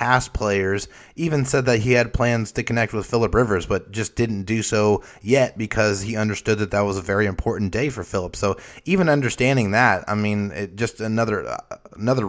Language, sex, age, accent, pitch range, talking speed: English, male, 30-49, American, 100-120 Hz, 200 wpm